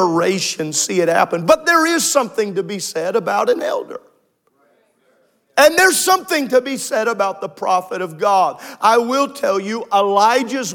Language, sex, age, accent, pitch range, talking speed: English, male, 40-59, American, 165-235 Hz, 160 wpm